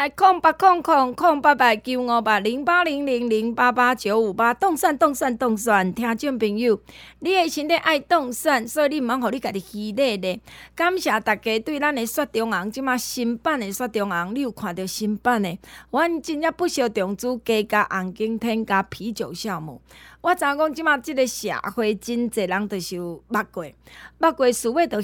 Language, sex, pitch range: Chinese, female, 215-295 Hz